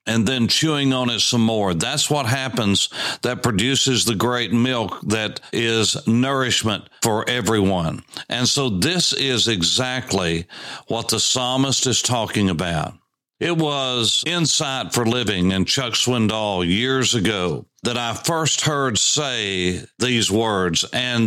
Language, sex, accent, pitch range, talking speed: English, male, American, 105-130 Hz, 140 wpm